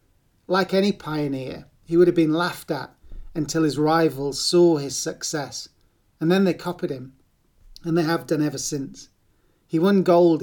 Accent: British